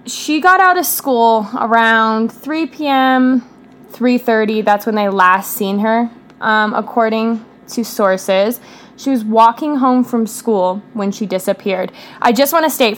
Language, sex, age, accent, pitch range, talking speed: English, female, 20-39, American, 205-250 Hz, 155 wpm